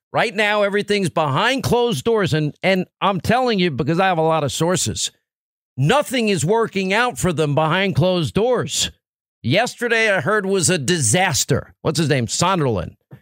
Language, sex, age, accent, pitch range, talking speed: English, male, 50-69, American, 150-205 Hz, 170 wpm